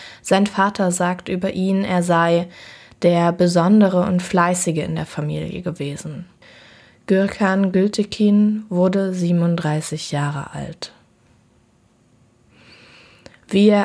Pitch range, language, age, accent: 170-195 Hz, German, 20-39, German